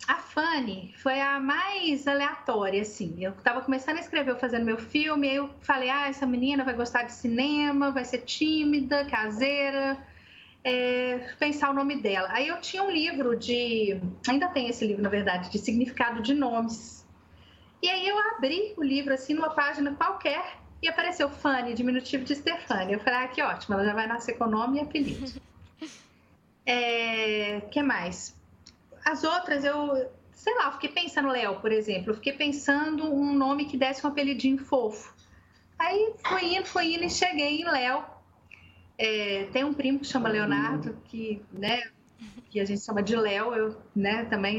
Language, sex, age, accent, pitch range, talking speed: Portuguese, female, 30-49, Brazilian, 220-290 Hz, 175 wpm